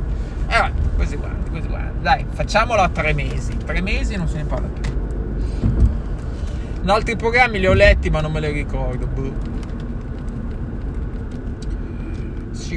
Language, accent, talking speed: Italian, native, 130 wpm